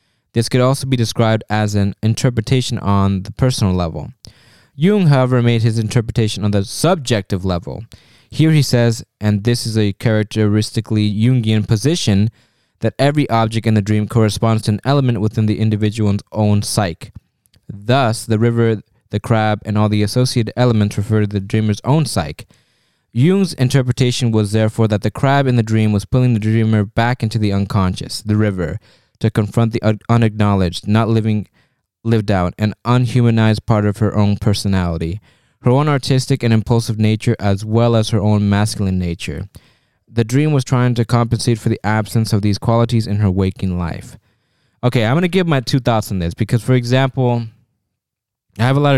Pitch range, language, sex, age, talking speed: 105-125 Hz, English, male, 20-39, 175 wpm